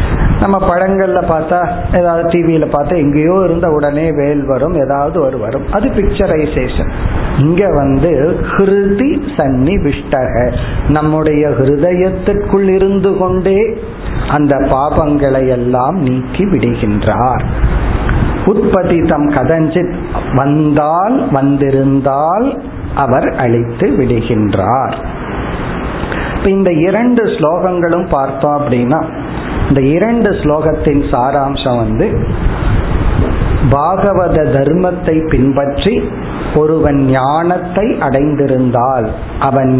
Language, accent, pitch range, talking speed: Tamil, native, 135-180 Hz, 75 wpm